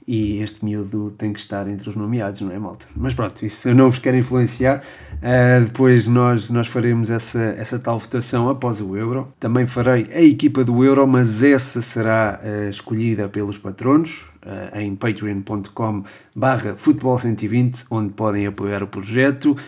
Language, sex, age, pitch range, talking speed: Portuguese, male, 30-49, 105-125 Hz, 150 wpm